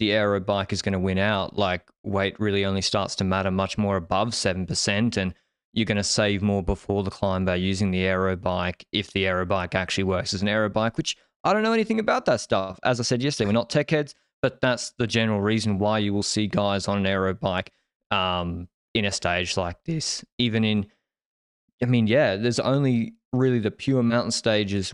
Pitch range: 95-115 Hz